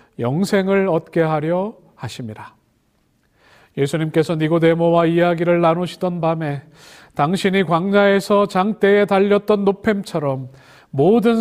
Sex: male